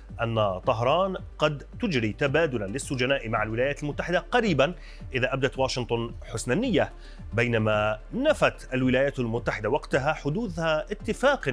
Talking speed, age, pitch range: 115 wpm, 30-49, 120-150 Hz